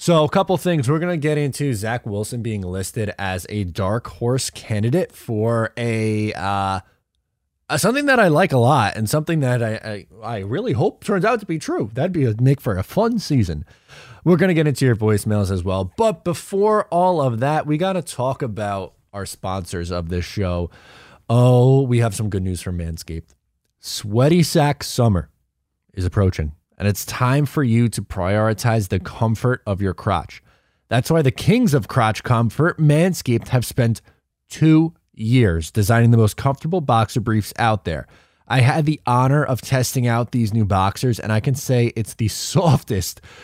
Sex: male